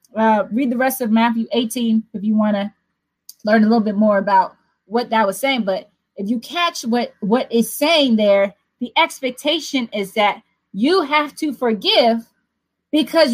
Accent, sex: American, female